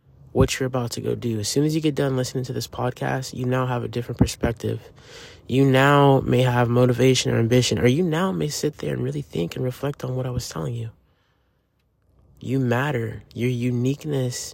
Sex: male